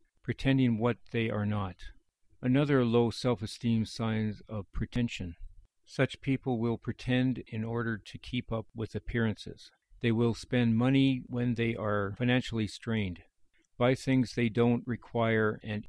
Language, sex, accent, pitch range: English, male, American, 105-125 Hz